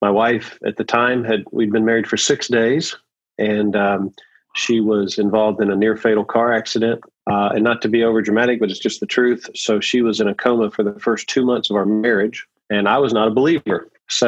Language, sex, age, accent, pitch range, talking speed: English, male, 40-59, American, 105-120 Hz, 225 wpm